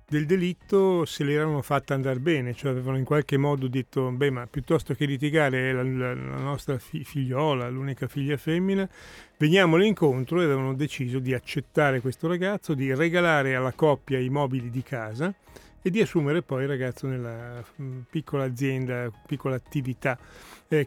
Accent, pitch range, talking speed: native, 130-150 Hz, 160 wpm